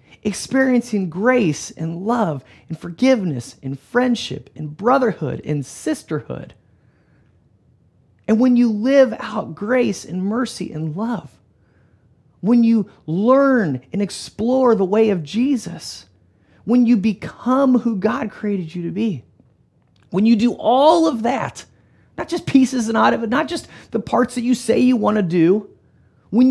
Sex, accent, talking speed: male, American, 145 wpm